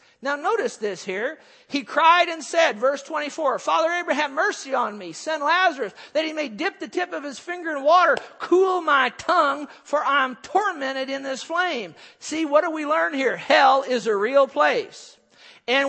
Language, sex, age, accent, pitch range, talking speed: English, male, 50-69, American, 245-300 Hz, 190 wpm